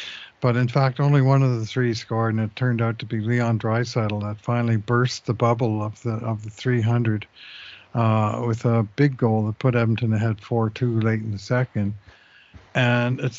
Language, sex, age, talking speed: English, male, 50-69, 195 wpm